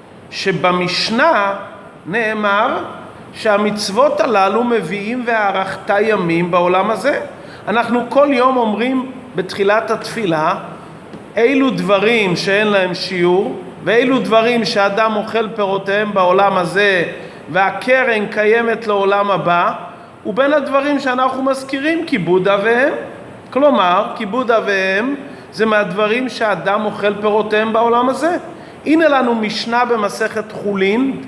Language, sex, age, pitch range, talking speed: Hebrew, male, 40-59, 200-255 Hz, 100 wpm